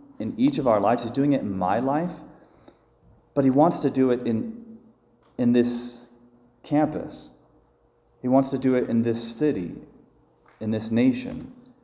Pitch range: 100-155 Hz